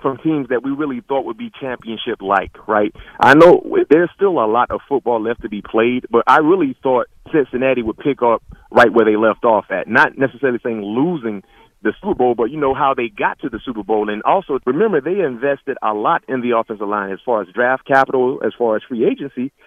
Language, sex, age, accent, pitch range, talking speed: English, male, 40-59, American, 115-150 Hz, 225 wpm